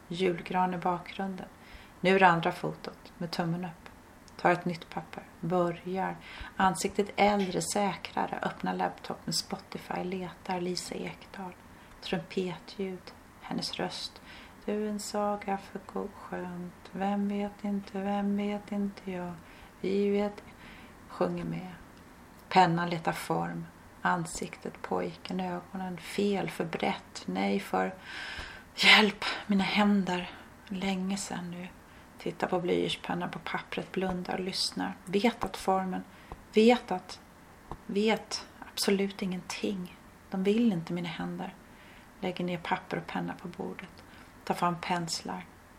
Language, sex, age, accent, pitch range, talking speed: Swedish, female, 30-49, native, 175-200 Hz, 125 wpm